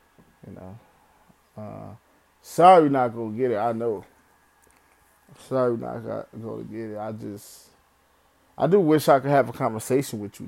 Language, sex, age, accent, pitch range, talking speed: English, male, 20-39, American, 110-125 Hz, 155 wpm